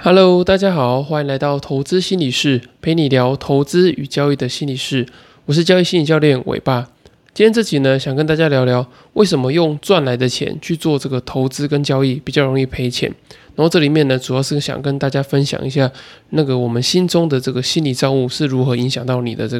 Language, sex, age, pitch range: Chinese, male, 20-39, 130-160 Hz